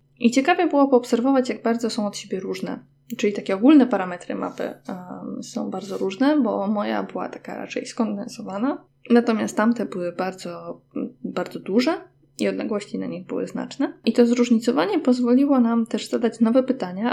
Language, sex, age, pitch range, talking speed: Polish, female, 20-39, 200-250 Hz, 160 wpm